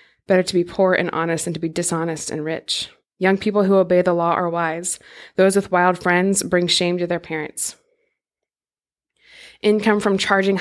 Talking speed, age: 180 wpm, 20-39